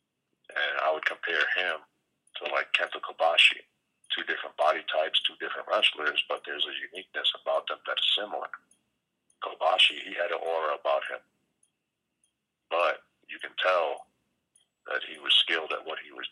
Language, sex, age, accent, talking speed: English, male, 50-69, American, 160 wpm